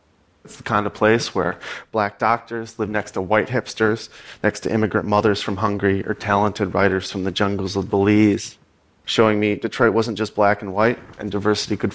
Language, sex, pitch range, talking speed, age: English, male, 95-110 Hz, 190 wpm, 30-49